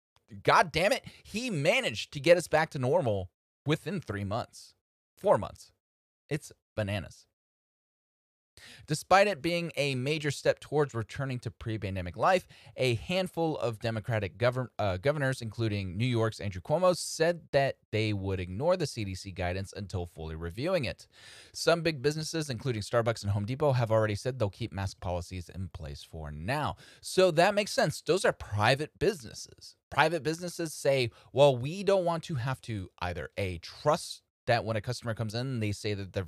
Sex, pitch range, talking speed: male, 105-155 Hz, 170 wpm